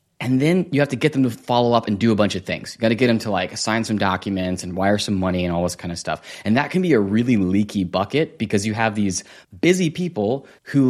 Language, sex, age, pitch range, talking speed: English, male, 20-39, 100-130 Hz, 275 wpm